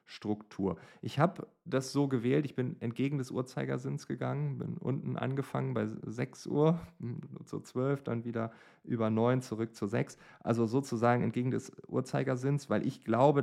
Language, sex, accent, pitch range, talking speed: German, male, German, 110-145 Hz, 155 wpm